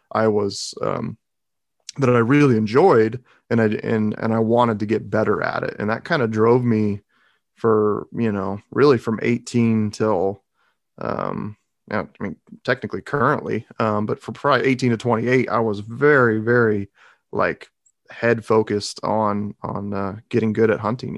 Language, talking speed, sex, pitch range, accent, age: English, 160 wpm, male, 105-115 Hz, American, 30-49